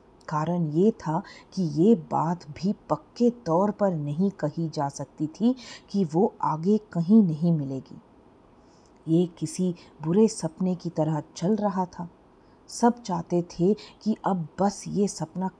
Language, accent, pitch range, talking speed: English, Indian, 160-200 Hz, 145 wpm